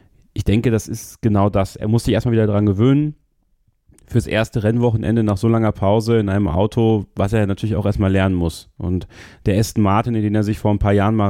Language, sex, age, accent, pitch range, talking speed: German, male, 30-49, German, 100-115 Hz, 230 wpm